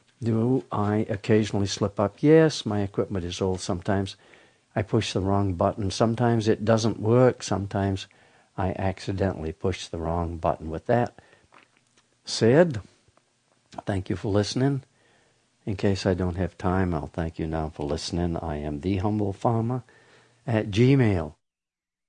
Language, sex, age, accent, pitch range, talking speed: English, male, 60-79, American, 95-120 Hz, 145 wpm